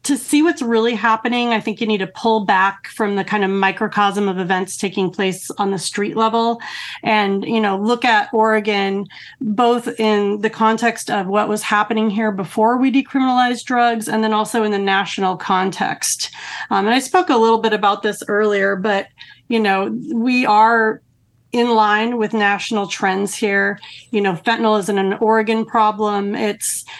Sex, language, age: female, English, 30-49